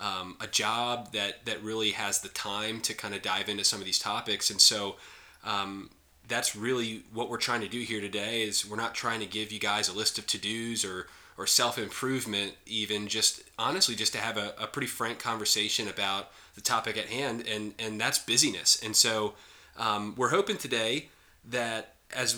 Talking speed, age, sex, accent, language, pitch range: 200 wpm, 20-39, male, American, English, 105-125 Hz